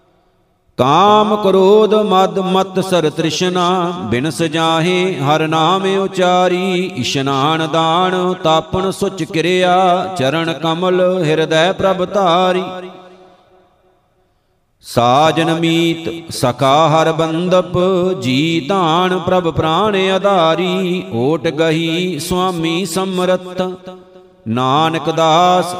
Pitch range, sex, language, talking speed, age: 160-185 Hz, male, Punjabi, 80 wpm, 50-69